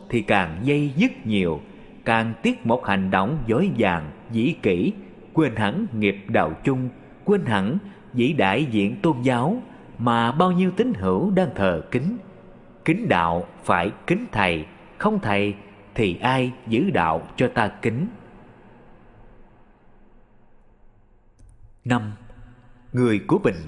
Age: 20-39